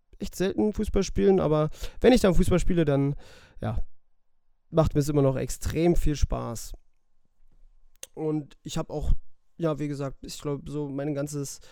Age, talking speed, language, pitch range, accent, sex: 30-49, 165 wpm, German, 145-175 Hz, German, male